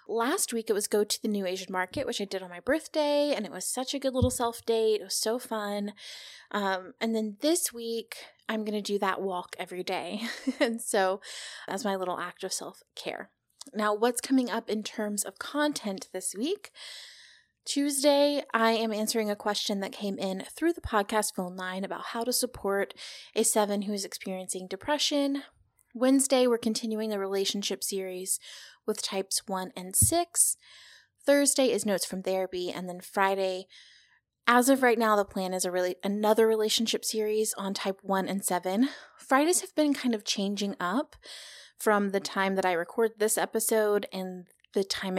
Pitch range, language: 195-250 Hz, English